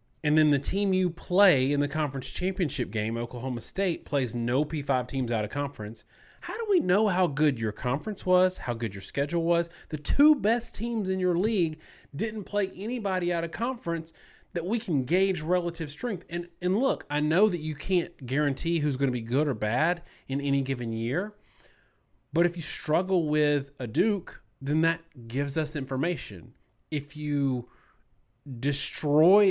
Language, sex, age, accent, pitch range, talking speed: English, male, 30-49, American, 130-180 Hz, 180 wpm